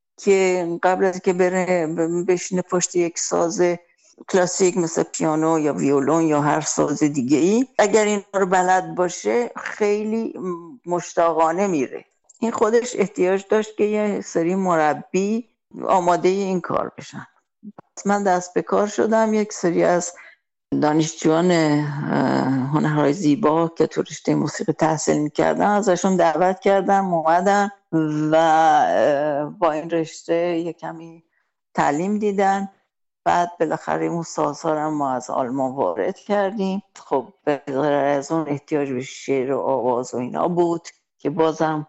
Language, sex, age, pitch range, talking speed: English, female, 60-79, 150-195 Hz, 125 wpm